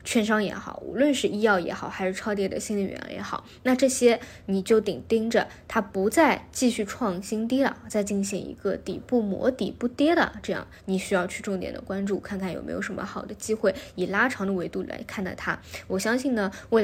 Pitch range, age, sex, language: 195-230 Hz, 20-39, female, Chinese